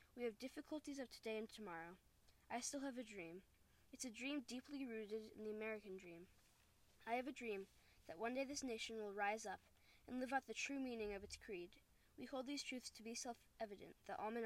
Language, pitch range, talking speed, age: English, 200-240 Hz, 215 wpm, 10-29